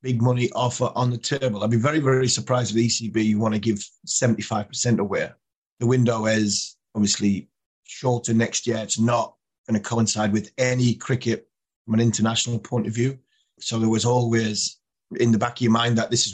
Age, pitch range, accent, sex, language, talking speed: 30-49, 110-130 Hz, British, male, English, 195 wpm